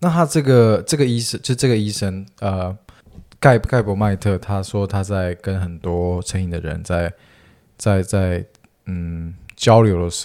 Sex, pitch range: male, 90-110 Hz